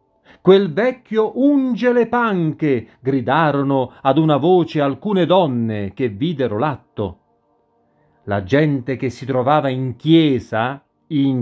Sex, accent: male, native